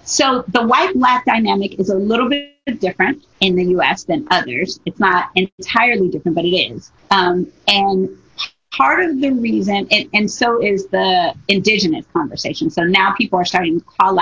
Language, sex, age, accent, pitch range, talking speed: English, female, 30-49, American, 180-225 Hz, 175 wpm